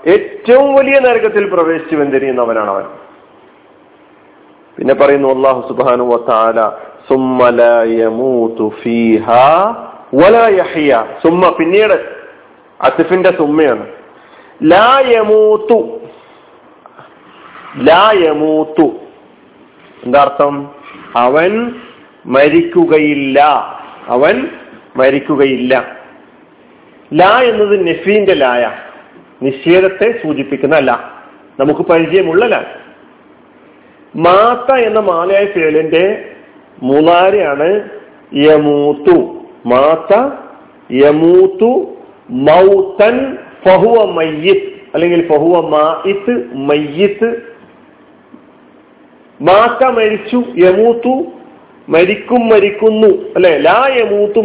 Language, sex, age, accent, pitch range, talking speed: Malayalam, male, 50-69, native, 140-230 Hz, 50 wpm